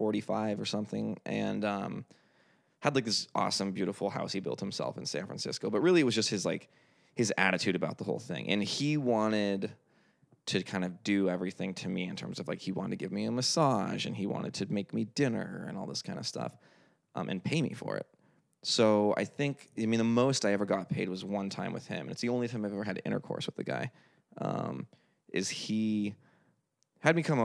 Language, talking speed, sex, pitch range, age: English, 225 wpm, male, 100-125 Hz, 20-39